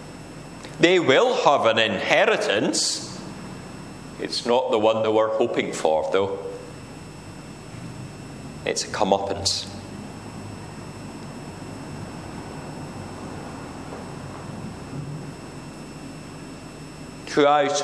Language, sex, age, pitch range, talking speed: English, male, 40-59, 135-180 Hz, 60 wpm